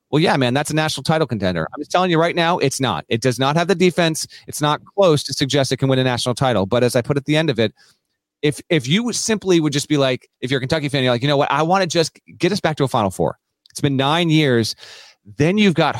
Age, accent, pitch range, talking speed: 30-49, American, 120-160 Hz, 295 wpm